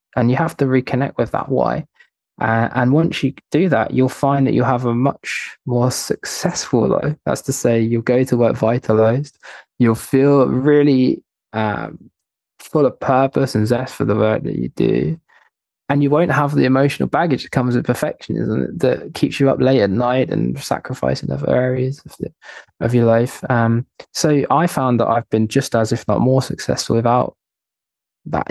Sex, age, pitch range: male, 20-39, 110-135 Hz